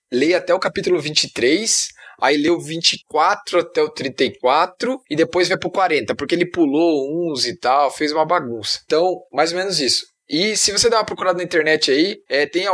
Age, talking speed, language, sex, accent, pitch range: 20-39, 200 wpm, Portuguese, male, Brazilian, 155-205 Hz